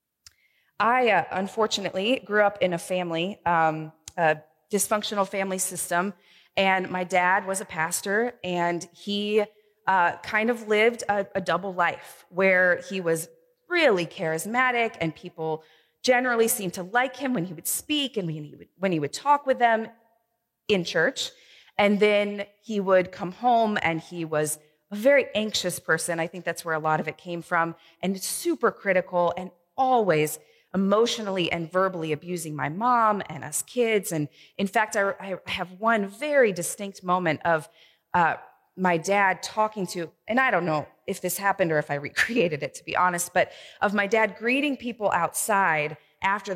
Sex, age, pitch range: female, 30-49, 170-215 Hz